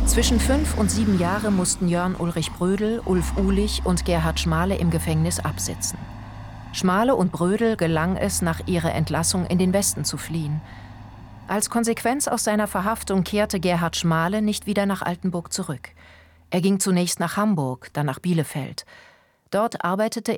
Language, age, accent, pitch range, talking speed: German, 40-59, German, 160-200 Hz, 155 wpm